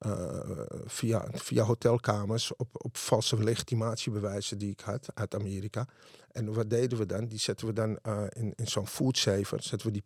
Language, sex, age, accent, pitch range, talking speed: Dutch, male, 50-69, Dutch, 105-130 Hz, 180 wpm